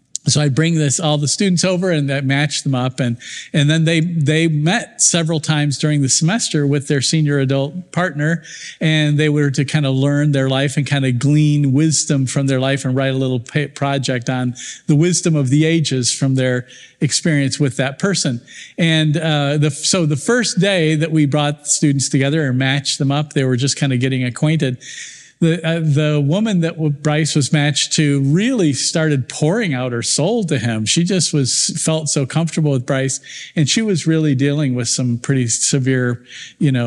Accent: American